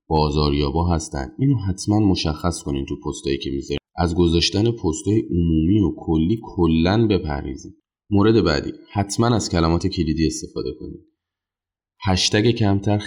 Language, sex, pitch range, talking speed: Persian, male, 80-95 Hz, 140 wpm